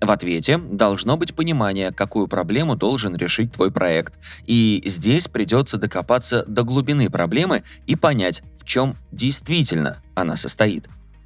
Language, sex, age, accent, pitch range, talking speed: Russian, male, 20-39, native, 95-135 Hz, 135 wpm